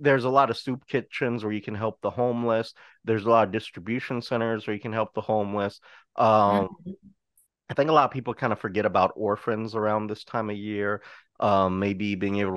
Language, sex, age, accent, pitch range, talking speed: English, male, 30-49, American, 95-115 Hz, 215 wpm